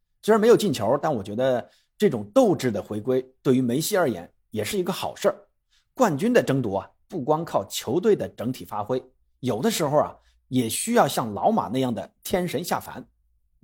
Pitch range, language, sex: 105-140 Hz, Chinese, male